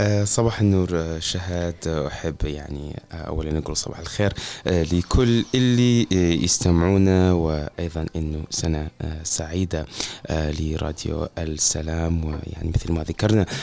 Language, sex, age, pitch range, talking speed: Arabic, male, 20-39, 80-95 Hz, 95 wpm